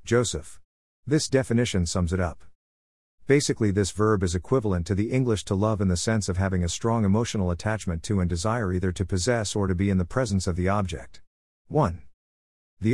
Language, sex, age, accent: English, male, 50-69, American